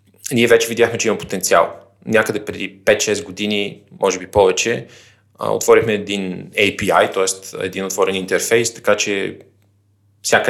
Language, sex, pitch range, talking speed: Bulgarian, male, 95-120 Hz, 130 wpm